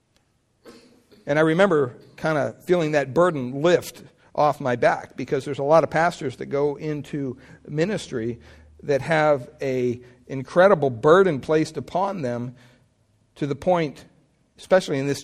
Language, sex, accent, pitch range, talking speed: English, male, American, 135-170 Hz, 140 wpm